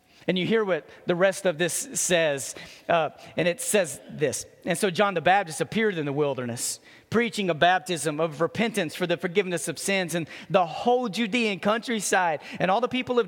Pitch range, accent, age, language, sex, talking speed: 145-195 Hz, American, 40-59, English, male, 195 wpm